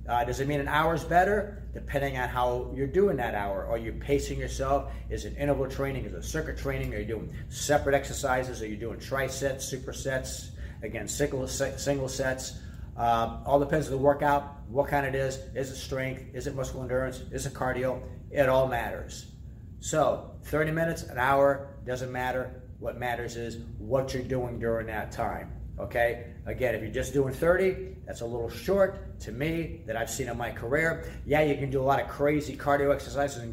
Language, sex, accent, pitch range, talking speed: English, male, American, 115-140 Hz, 195 wpm